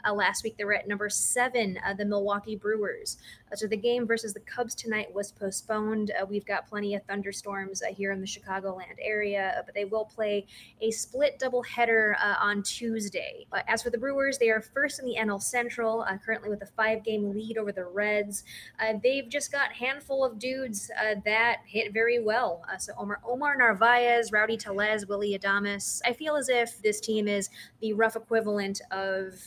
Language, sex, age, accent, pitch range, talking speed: English, female, 20-39, American, 200-230 Hz, 200 wpm